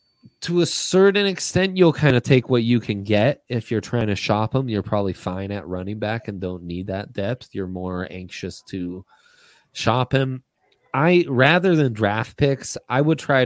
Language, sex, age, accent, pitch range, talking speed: English, male, 20-39, American, 95-115 Hz, 190 wpm